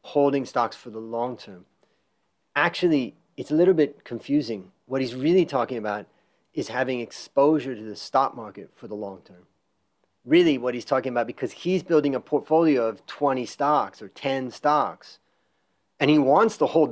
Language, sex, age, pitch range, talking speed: English, male, 30-49, 110-140 Hz, 175 wpm